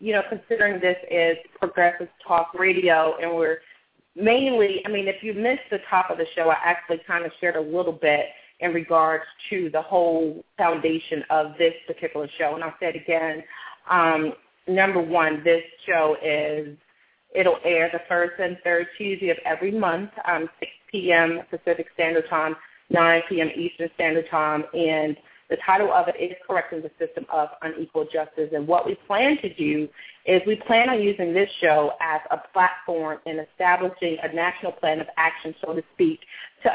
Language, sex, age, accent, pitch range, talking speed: English, female, 30-49, American, 160-180 Hz, 180 wpm